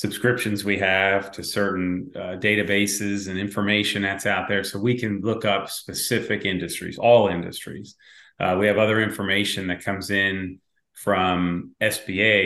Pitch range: 95-110 Hz